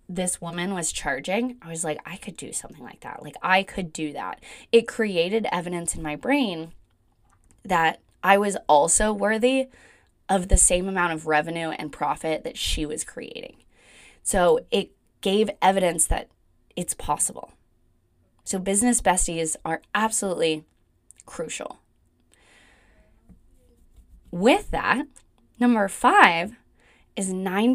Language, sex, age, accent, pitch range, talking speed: English, female, 20-39, American, 150-210 Hz, 130 wpm